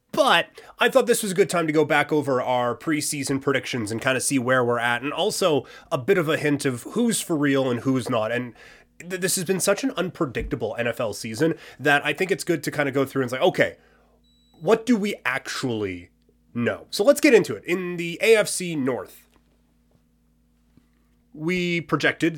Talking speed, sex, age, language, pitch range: 200 wpm, male, 30-49, English, 120-170 Hz